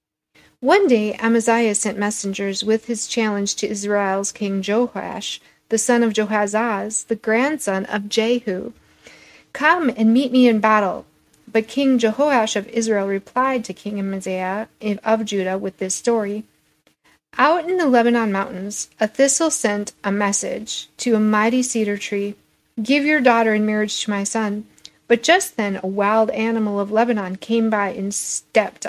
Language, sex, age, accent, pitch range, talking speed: English, female, 40-59, American, 200-240 Hz, 155 wpm